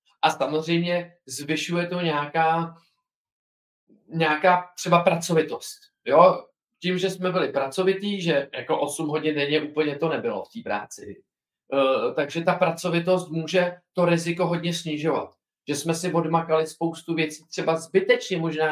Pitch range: 155-175 Hz